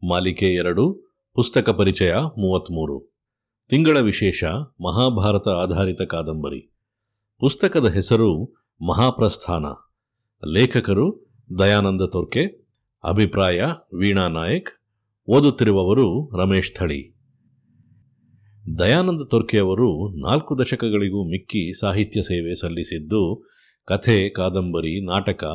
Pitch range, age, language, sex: 90-115 Hz, 50-69, Kannada, male